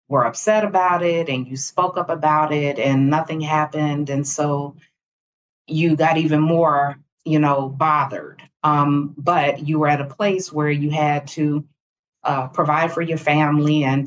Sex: female